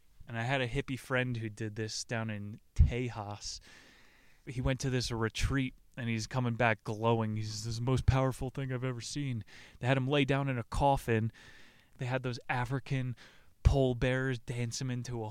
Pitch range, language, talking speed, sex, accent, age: 110-130 Hz, English, 190 wpm, male, American, 20-39